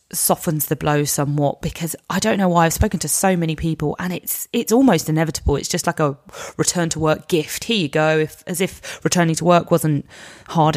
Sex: female